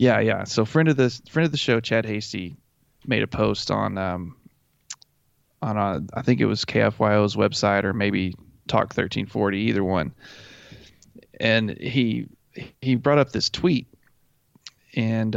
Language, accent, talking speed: English, American, 155 wpm